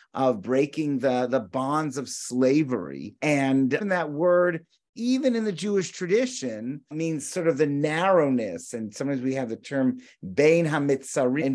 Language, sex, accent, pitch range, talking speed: English, male, American, 130-175 Hz, 145 wpm